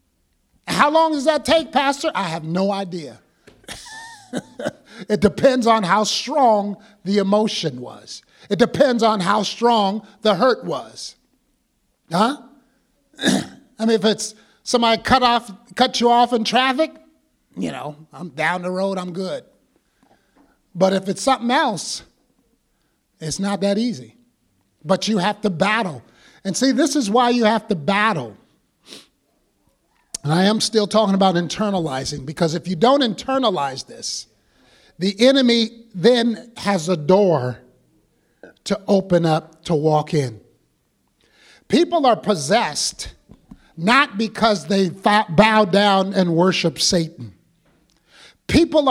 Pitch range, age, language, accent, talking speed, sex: 165-230 Hz, 50-69, English, American, 130 wpm, male